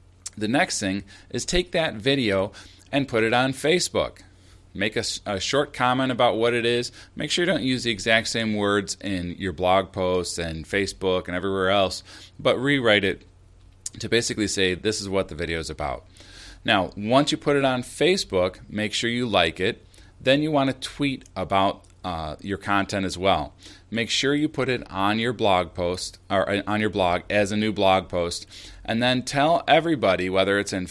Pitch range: 95-125 Hz